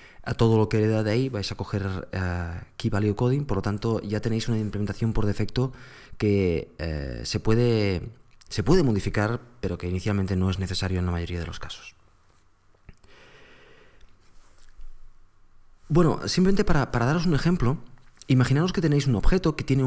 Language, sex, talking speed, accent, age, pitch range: Spanish, male, 170 wpm, Spanish, 30-49, 100-135 Hz